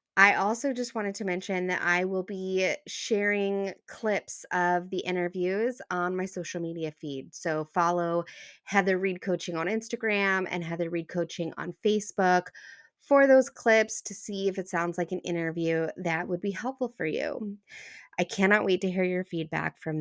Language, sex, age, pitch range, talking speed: English, female, 20-39, 170-205 Hz, 175 wpm